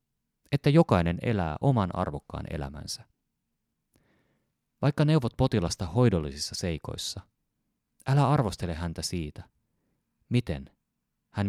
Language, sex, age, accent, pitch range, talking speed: Finnish, male, 30-49, native, 85-130 Hz, 90 wpm